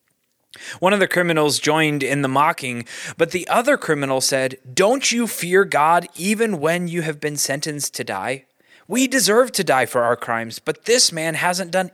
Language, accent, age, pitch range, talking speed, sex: English, American, 20-39, 135-185 Hz, 185 wpm, male